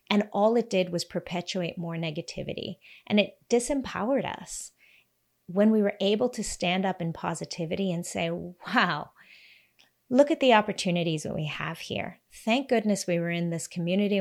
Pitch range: 180-240 Hz